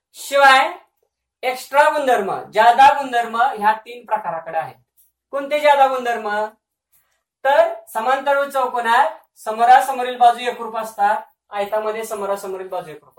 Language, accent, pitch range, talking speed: Marathi, native, 215-265 Hz, 105 wpm